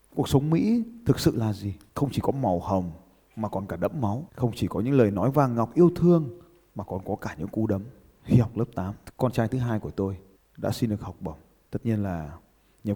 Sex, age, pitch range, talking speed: male, 20-39, 100-135 Hz, 245 wpm